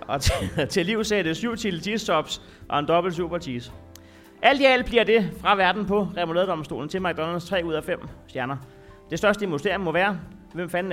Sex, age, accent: male, 30-49, native